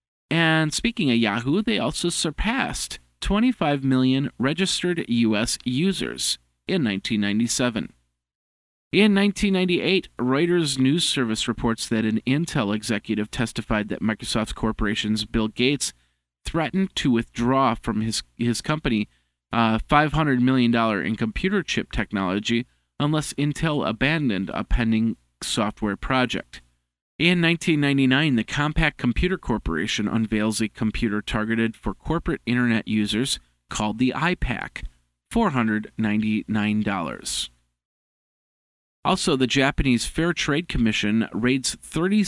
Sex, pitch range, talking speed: male, 105-140 Hz, 110 wpm